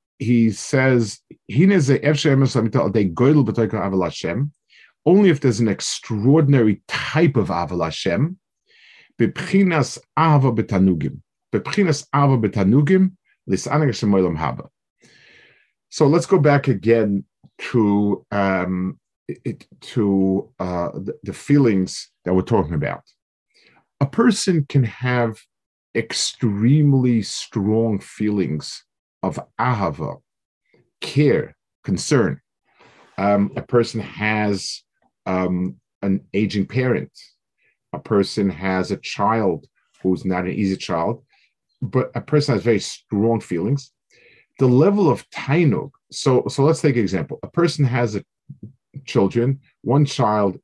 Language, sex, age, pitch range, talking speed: English, male, 50-69, 100-140 Hz, 90 wpm